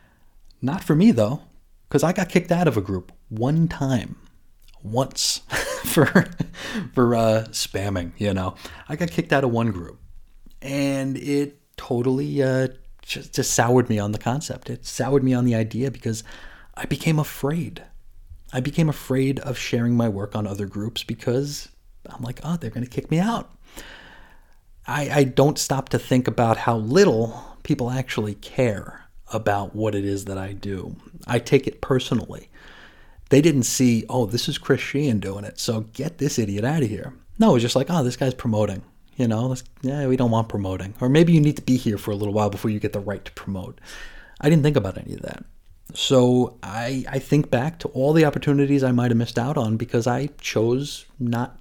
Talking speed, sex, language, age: 195 wpm, male, English, 30-49